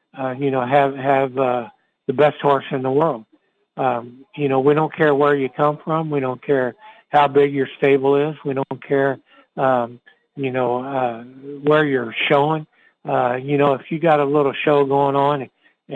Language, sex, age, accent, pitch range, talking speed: English, male, 60-79, American, 140-165 Hz, 195 wpm